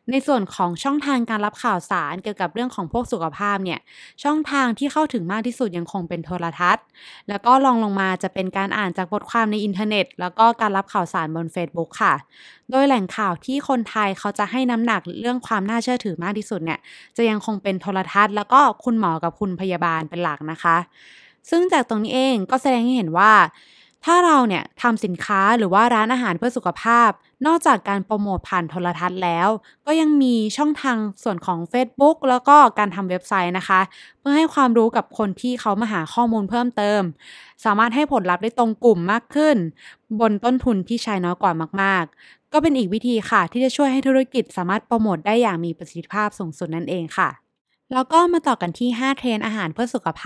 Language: Thai